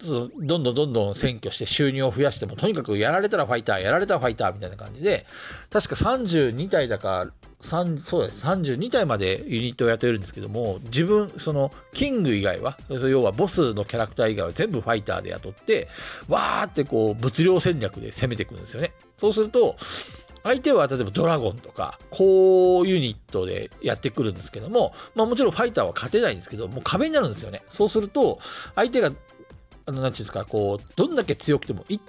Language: Japanese